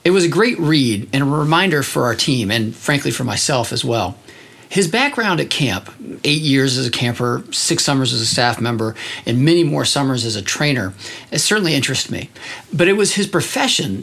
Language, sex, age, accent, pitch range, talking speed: English, male, 40-59, American, 120-160 Hz, 200 wpm